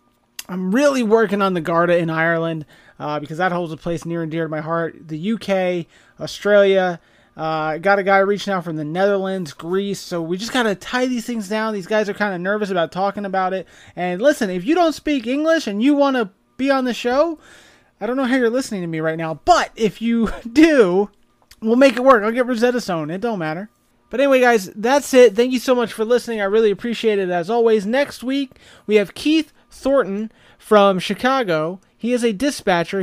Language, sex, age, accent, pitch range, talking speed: English, male, 30-49, American, 175-240 Hz, 220 wpm